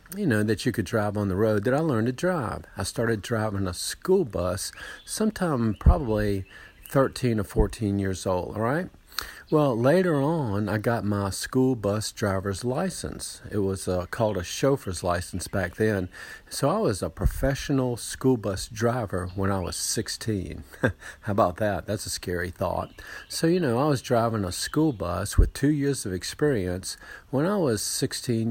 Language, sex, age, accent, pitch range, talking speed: English, male, 50-69, American, 100-140 Hz, 180 wpm